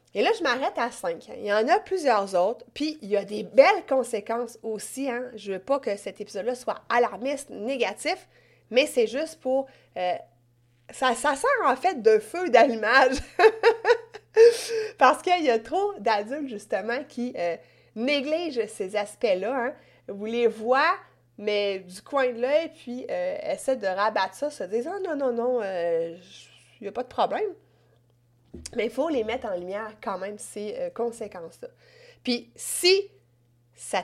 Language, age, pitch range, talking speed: French, 30-49, 205-300 Hz, 170 wpm